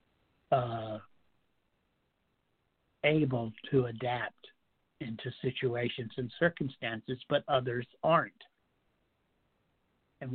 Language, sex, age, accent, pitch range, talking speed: English, male, 60-79, American, 120-140 Hz, 70 wpm